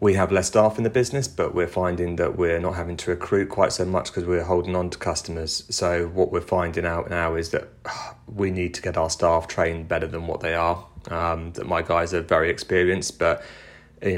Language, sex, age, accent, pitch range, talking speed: English, male, 30-49, British, 80-90 Hz, 235 wpm